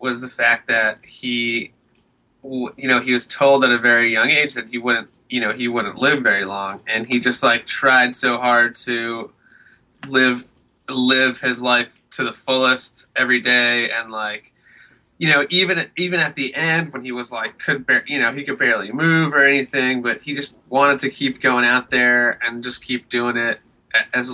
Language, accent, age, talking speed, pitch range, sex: English, American, 20-39, 195 wpm, 120-140 Hz, male